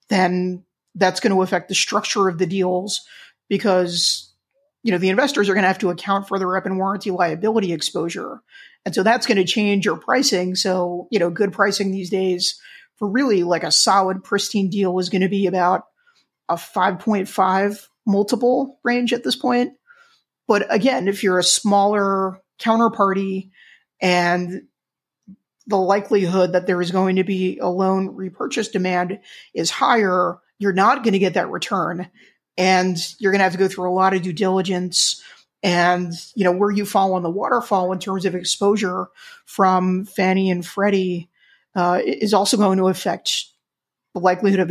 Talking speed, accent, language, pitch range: 175 wpm, American, English, 185-210 Hz